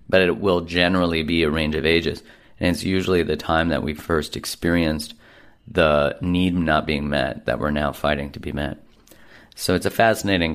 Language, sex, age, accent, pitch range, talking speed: English, male, 30-49, American, 75-90 Hz, 195 wpm